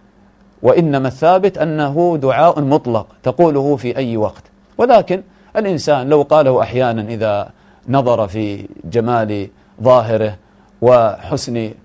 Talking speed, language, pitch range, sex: 100 wpm, English, 120-150 Hz, male